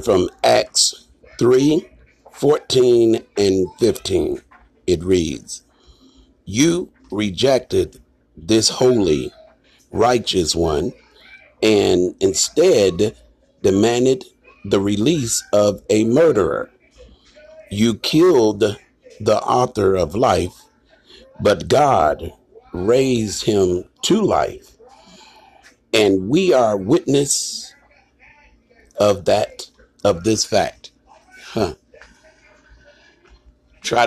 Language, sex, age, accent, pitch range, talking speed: English, male, 50-69, American, 100-145 Hz, 80 wpm